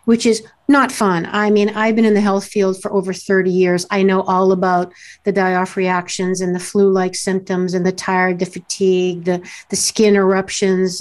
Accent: American